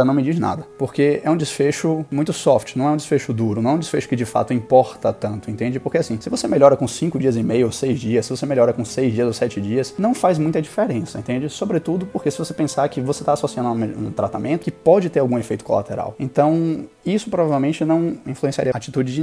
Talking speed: 240 wpm